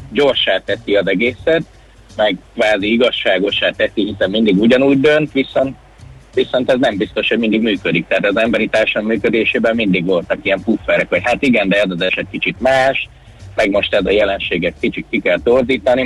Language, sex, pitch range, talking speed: Hungarian, male, 95-130 Hz, 175 wpm